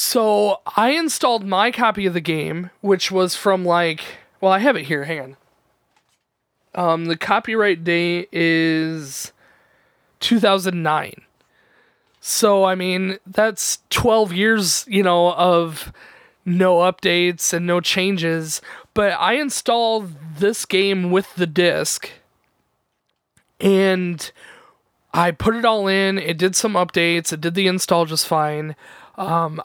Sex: male